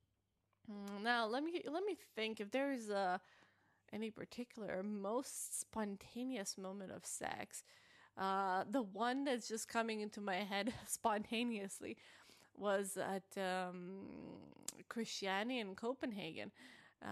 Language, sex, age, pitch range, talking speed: English, female, 20-39, 195-225 Hz, 115 wpm